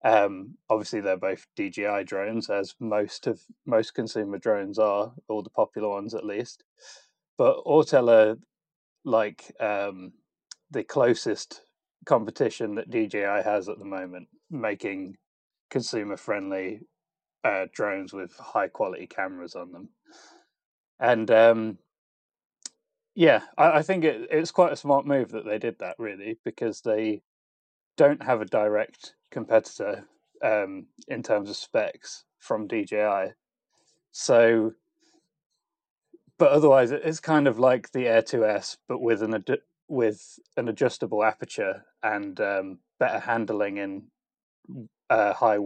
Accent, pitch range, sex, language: British, 100-135 Hz, male, English